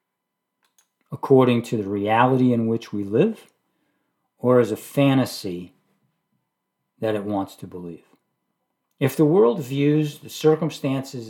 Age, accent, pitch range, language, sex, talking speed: 50-69, American, 110-150 Hz, English, male, 120 wpm